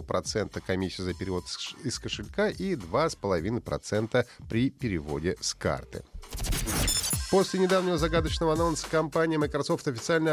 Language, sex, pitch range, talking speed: Russian, male, 105-145 Hz, 110 wpm